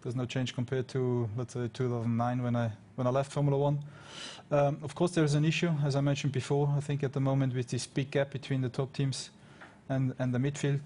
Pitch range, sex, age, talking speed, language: 125-140 Hz, male, 20-39, 240 wpm, English